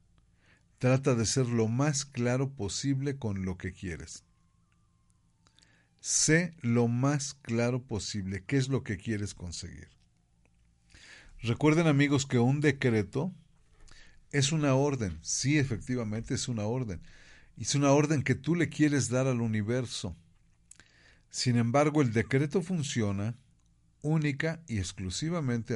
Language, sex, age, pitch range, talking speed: Spanish, male, 40-59, 95-140 Hz, 125 wpm